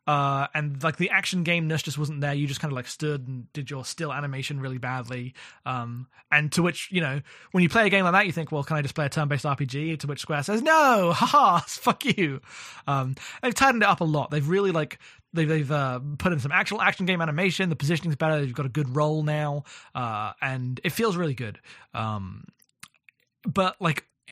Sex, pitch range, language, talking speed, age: male, 135-170 Hz, English, 225 wpm, 20-39